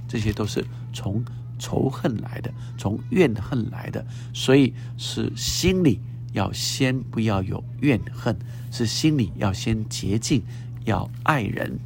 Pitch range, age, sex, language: 115-125 Hz, 60-79, male, Chinese